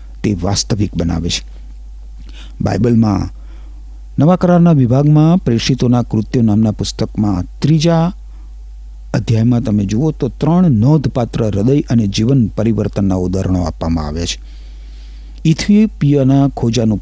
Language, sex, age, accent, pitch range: Gujarati, male, 60-79, native, 80-130 Hz